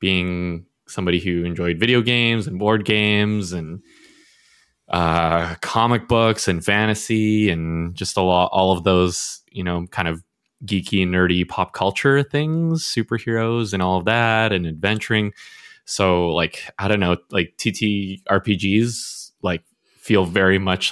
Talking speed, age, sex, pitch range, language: 145 wpm, 20-39, male, 90-115 Hz, English